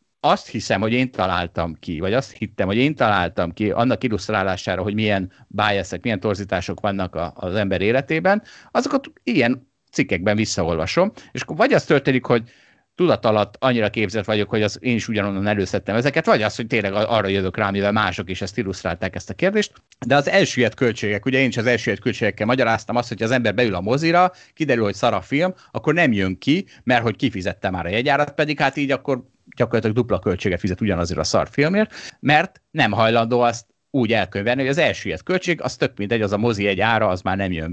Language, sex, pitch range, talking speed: Hungarian, male, 100-135 Hz, 200 wpm